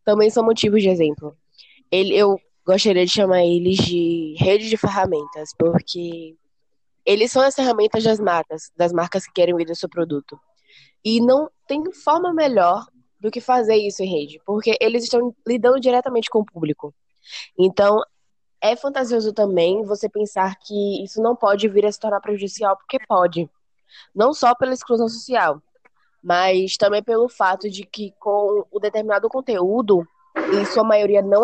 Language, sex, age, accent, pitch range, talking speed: Portuguese, female, 10-29, Brazilian, 190-235 Hz, 160 wpm